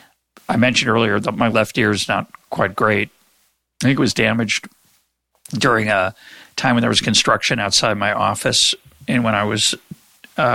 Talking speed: 175 wpm